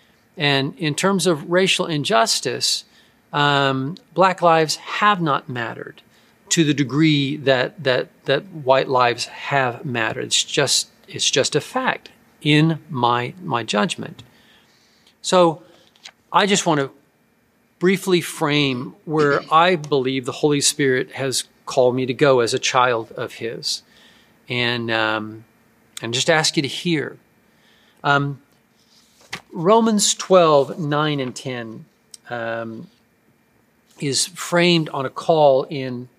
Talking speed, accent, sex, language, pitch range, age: 125 wpm, American, male, English, 130-170 Hz, 40-59